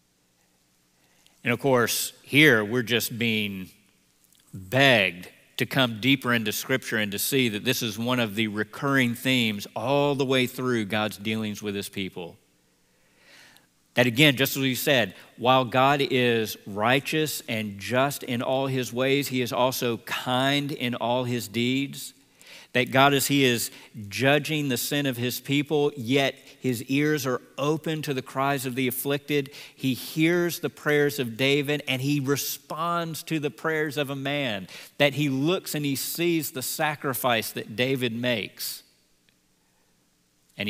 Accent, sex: American, male